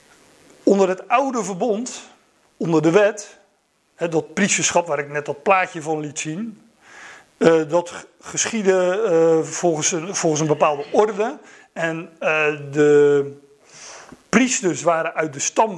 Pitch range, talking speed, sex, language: 155-205 Hz, 115 wpm, male, Dutch